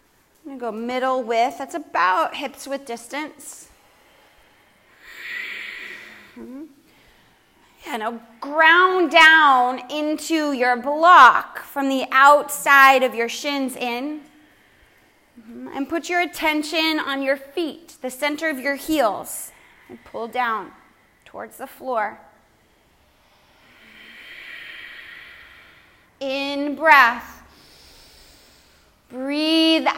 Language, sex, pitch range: English, female, 255-320 Hz